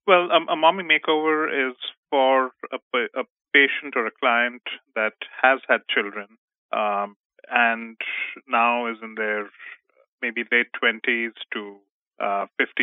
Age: 30-49